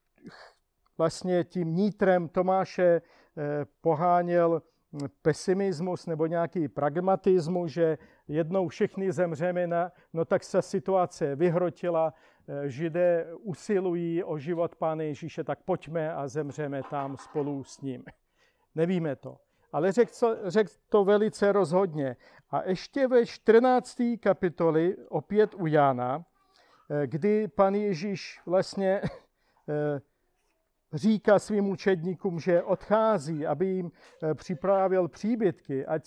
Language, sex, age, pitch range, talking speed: Czech, male, 50-69, 160-200 Hz, 105 wpm